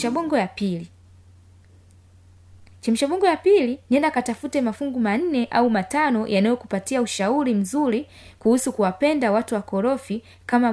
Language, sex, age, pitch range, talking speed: Swahili, female, 20-39, 170-245 Hz, 110 wpm